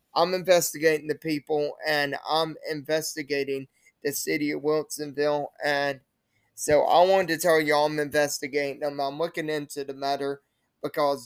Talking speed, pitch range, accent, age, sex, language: 145 wpm, 140-155 Hz, American, 20-39, male, English